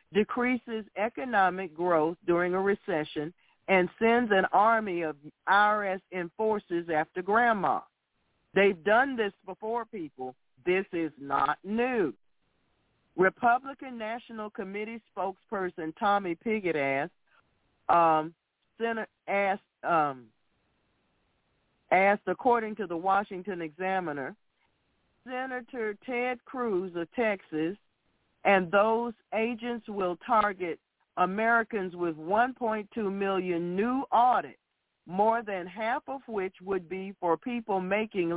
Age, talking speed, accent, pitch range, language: 40-59, 100 wpm, American, 175-220 Hz, English